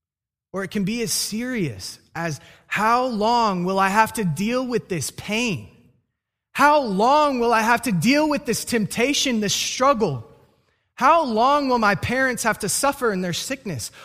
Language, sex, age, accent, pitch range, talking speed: English, male, 20-39, American, 125-210 Hz, 170 wpm